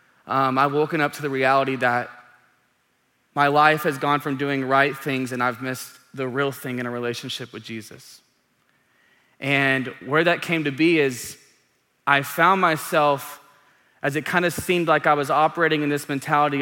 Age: 20-39